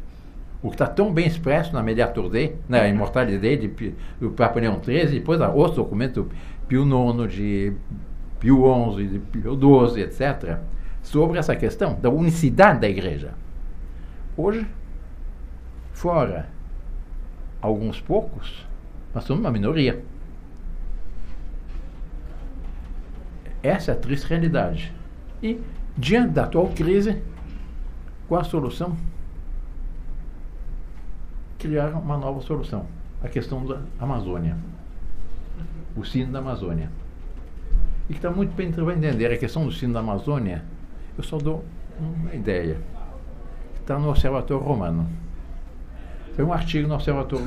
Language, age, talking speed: Portuguese, 60-79, 125 wpm